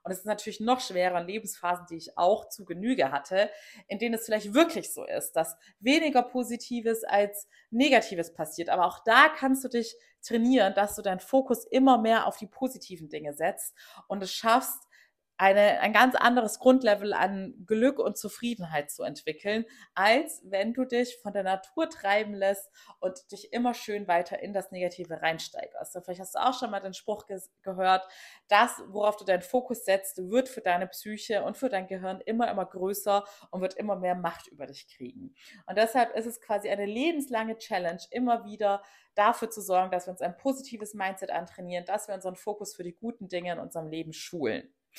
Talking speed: 190 wpm